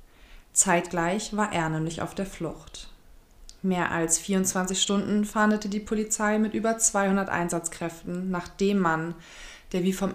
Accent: German